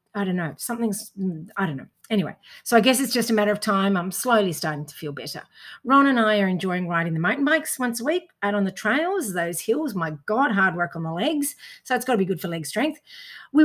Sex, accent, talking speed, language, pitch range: female, Australian, 255 wpm, English, 180-245 Hz